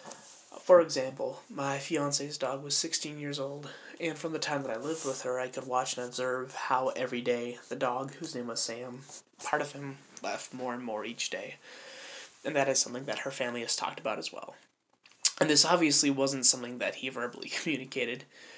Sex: male